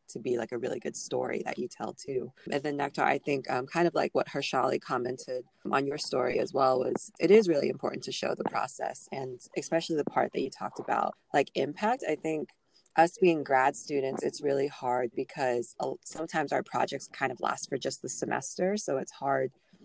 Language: English